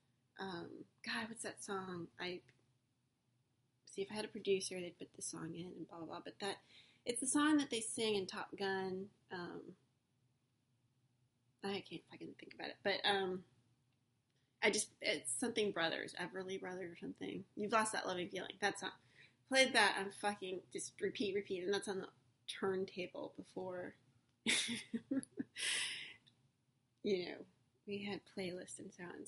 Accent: American